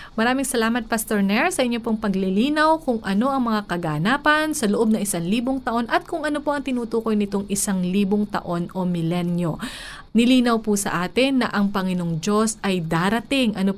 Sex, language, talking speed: female, Filipino, 185 wpm